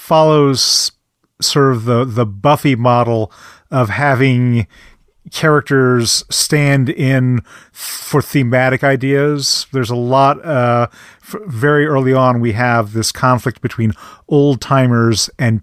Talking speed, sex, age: 120 wpm, male, 40-59